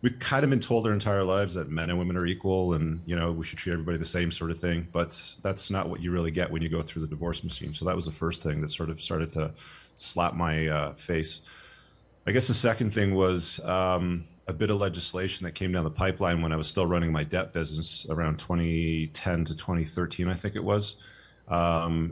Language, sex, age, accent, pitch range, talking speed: English, male, 30-49, American, 80-90 Hz, 240 wpm